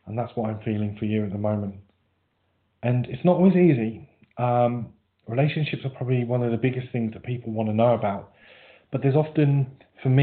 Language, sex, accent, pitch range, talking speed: English, male, British, 115-135 Hz, 205 wpm